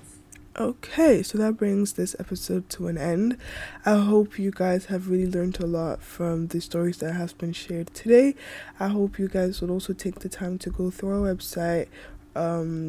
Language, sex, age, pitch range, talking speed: English, female, 10-29, 170-190 Hz, 190 wpm